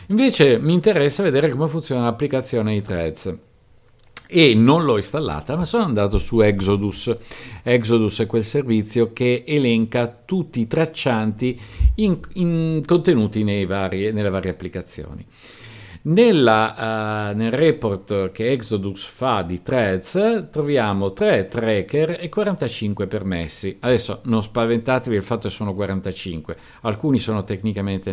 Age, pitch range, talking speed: 50-69, 100-140 Hz, 115 wpm